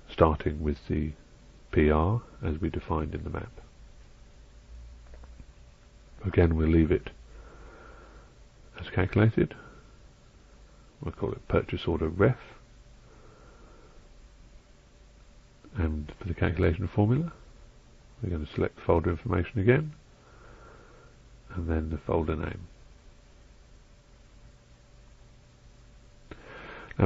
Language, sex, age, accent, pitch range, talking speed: English, male, 50-69, British, 75-110 Hz, 90 wpm